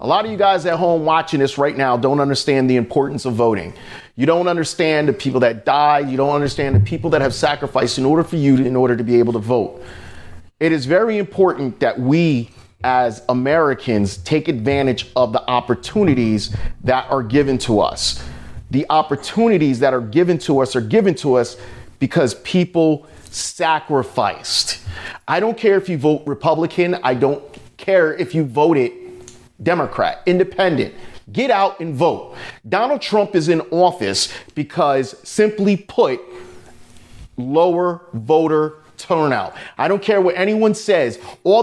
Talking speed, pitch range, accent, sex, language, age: 165 wpm, 130-185 Hz, American, male, English, 40-59